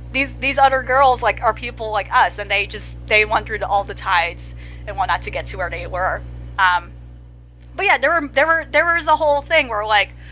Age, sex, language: 20-39, female, English